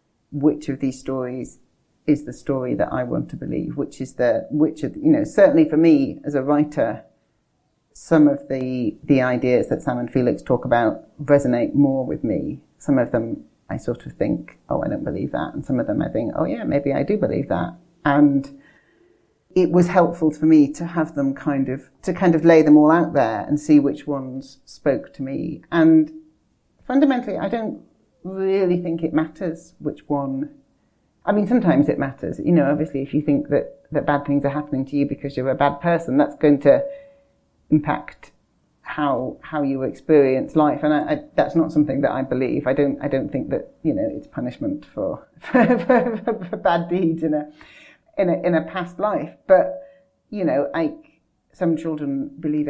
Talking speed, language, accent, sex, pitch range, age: 200 wpm, German, British, female, 145-180 Hz, 40-59